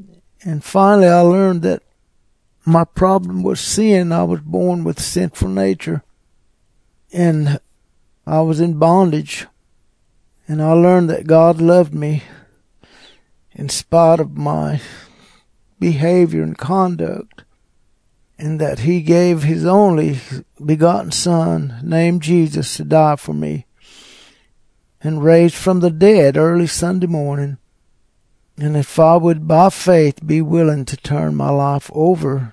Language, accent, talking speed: English, American, 130 wpm